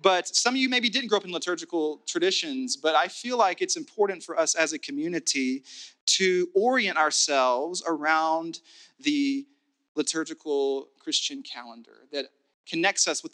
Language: English